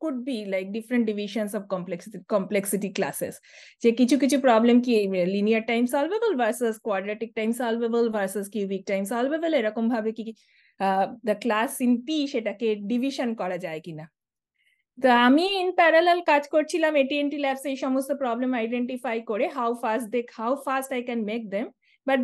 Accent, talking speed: native, 130 wpm